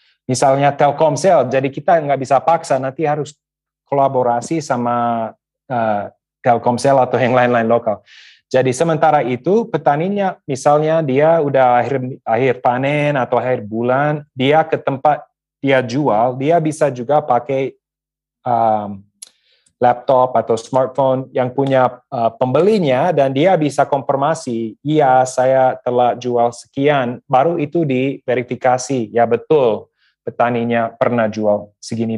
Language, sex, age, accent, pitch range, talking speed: Indonesian, male, 30-49, native, 115-140 Hz, 120 wpm